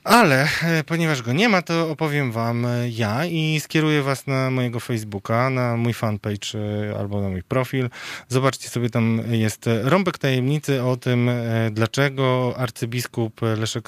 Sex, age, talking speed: male, 20-39, 145 wpm